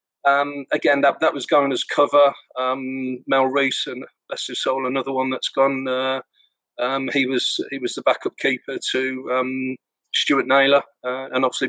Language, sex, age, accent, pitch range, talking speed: English, male, 40-59, British, 130-140 Hz, 175 wpm